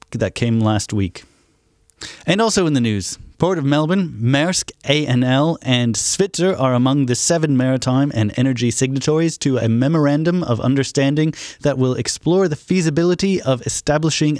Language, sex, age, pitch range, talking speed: English, male, 30-49, 115-150 Hz, 150 wpm